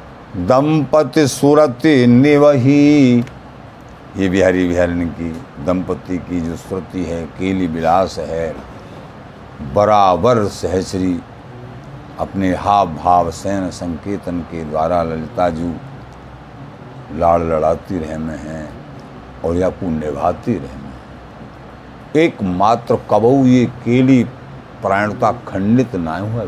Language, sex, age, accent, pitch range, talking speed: Hindi, male, 60-79, native, 80-120 Hz, 95 wpm